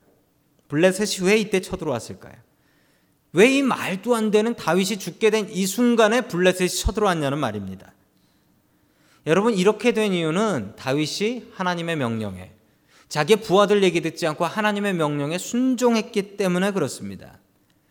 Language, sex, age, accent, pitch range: Korean, male, 40-59, native, 150-210 Hz